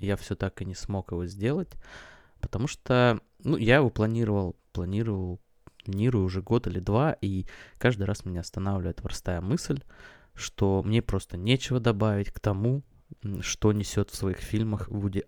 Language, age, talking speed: Russian, 20-39, 155 wpm